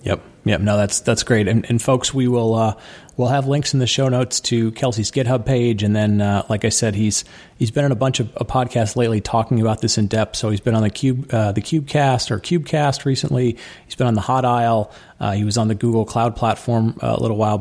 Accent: American